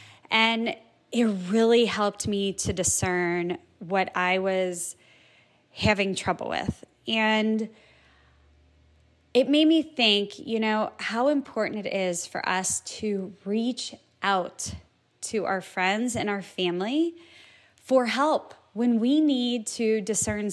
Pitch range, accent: 195-250 Hz, American